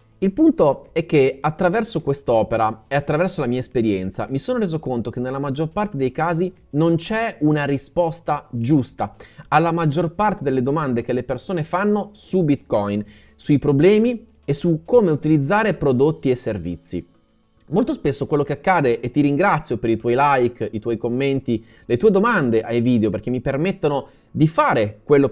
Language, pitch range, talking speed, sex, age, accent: Italian, 115-170 Hz, 170 wpm, male, 30-49, native